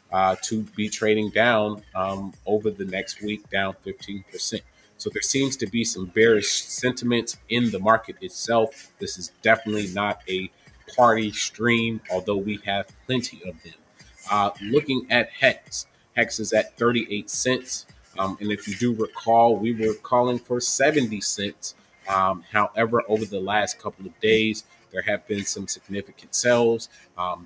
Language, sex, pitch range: English, male, 100-120 Hz